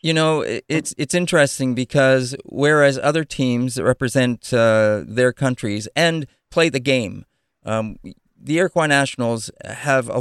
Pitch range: 115-145 Hz